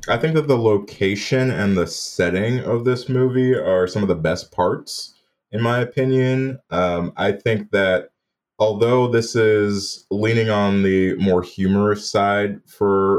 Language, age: English, 20-39